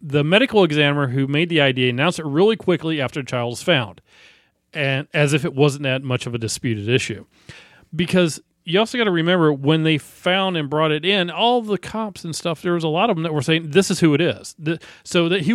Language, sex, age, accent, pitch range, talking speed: English, male, 40-59, American, 130-170 Hz, 245 wpm